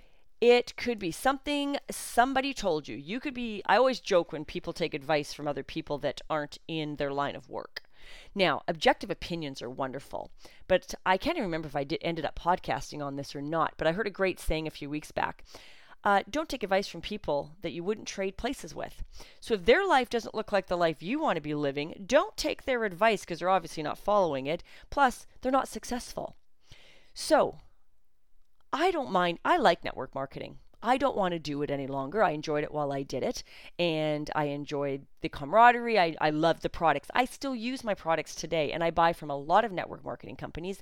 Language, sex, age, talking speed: English, female, 30-49, 215 wpm